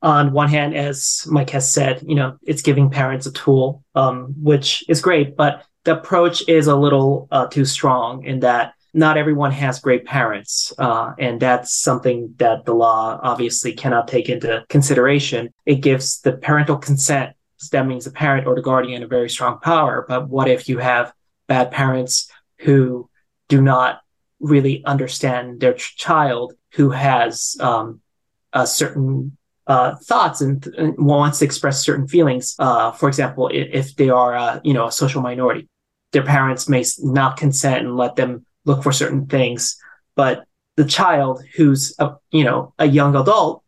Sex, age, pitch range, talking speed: male, 20-39, 130-150 Hz, 175 wpm